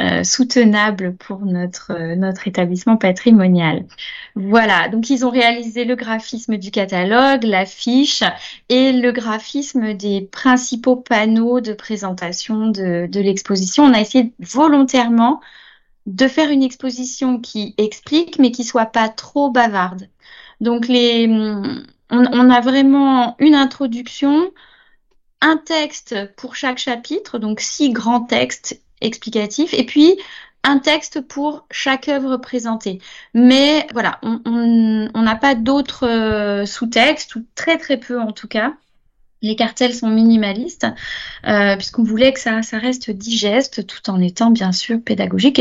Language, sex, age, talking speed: French, female, 20-39, 140 wpm